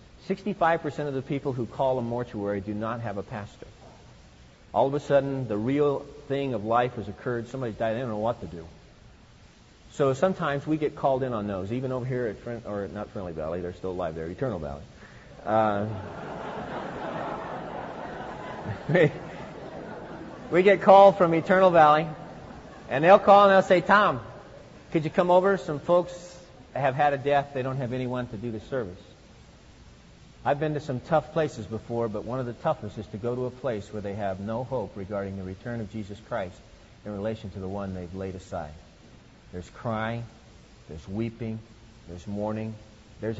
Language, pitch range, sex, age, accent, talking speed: English, 105-150 Hz, male, 40-59, American, 180 wpm